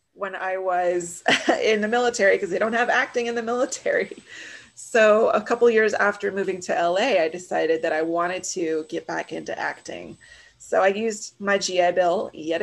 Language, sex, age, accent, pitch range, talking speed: English, female, 30-49, American, 170-220 Hz, 185 wpm